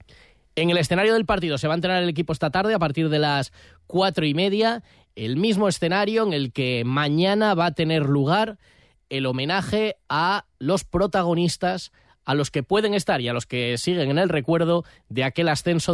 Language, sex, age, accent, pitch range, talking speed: Spanish, male, 20-39, Spanish, 130-175 Hz, 195 wpm